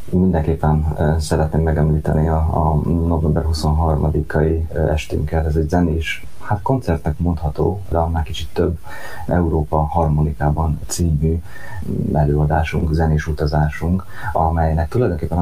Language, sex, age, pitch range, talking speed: Hungarian, male, 30-49, 75-85 Hz, 105 wpm